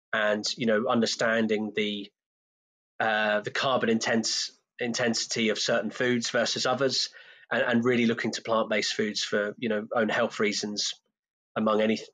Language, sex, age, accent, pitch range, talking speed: English, male, 20-39, British, 110-125 Hz, 150 wpm